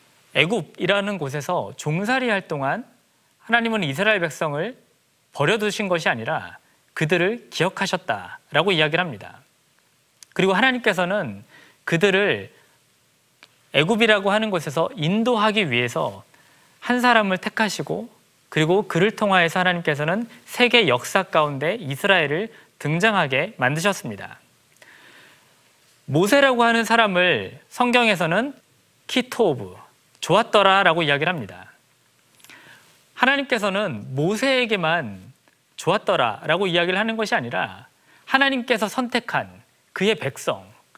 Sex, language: male, Korean